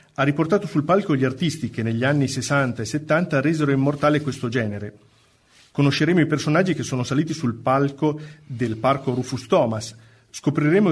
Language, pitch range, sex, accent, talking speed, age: Italian, 125-150 Hz, male, native, 160 wpm, 40-59